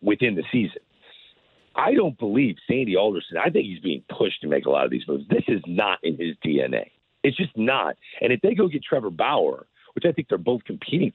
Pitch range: 105-175 Hz